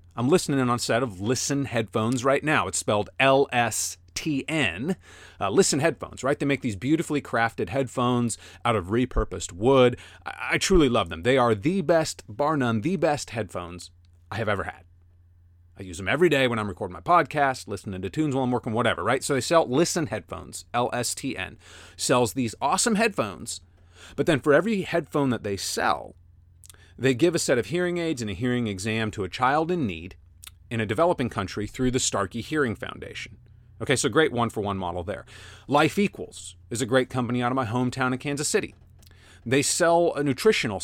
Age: 30-49